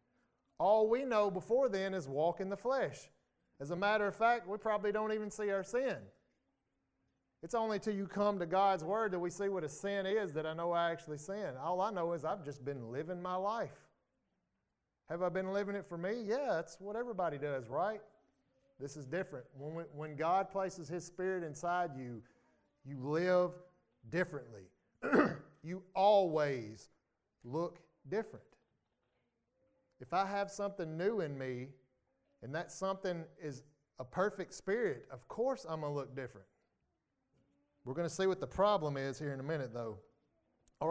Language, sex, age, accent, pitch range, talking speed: English, male, 30-49, American, 140-190 Hz, 175 wpm